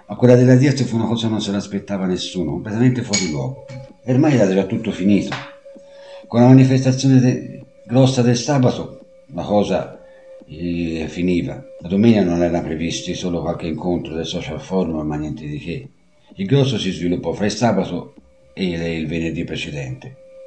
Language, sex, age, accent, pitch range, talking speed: Italian, male, 60-79, native, 90-135 Hz, 170 wpm